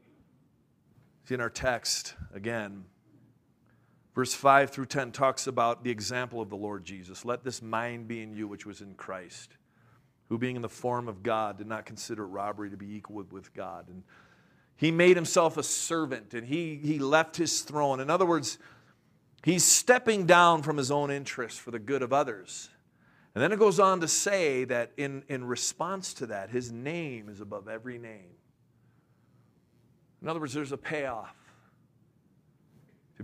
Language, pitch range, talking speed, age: English, 110-155 Hz, 175 wpm, 40-59